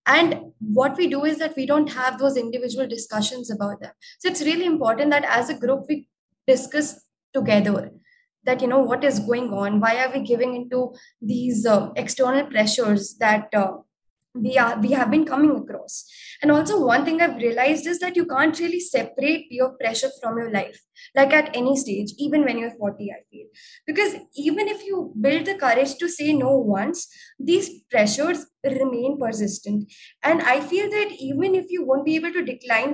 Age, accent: 20-39, Indian